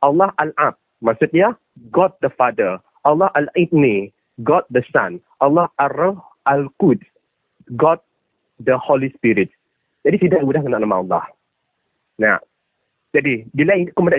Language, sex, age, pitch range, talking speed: English, male, 40-59, 155-220 Hz, 120 wpm